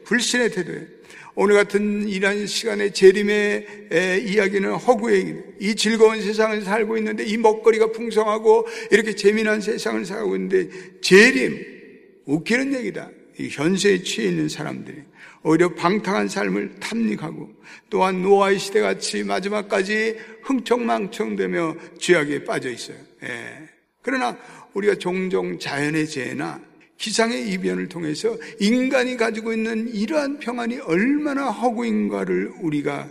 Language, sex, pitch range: Korean, male, 185-250 Hz